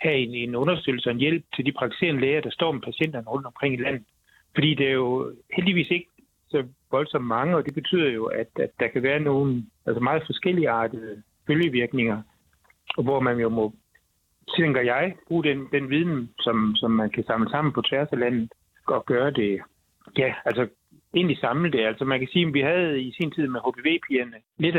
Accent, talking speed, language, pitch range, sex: native, 210 wpm, Danish, 120-150 Hz, male